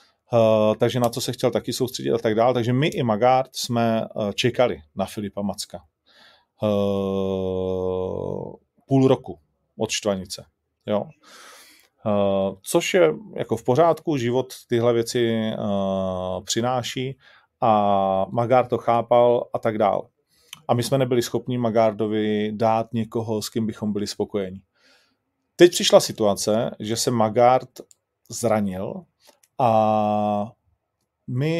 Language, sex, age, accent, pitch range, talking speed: Czech, male, 30-49, native, 105-120 Hz, 125 wpm